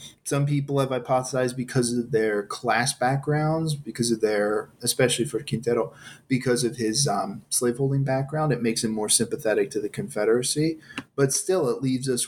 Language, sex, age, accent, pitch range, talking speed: English, male, 30-49, American, 115-140 Hz, 165 wpm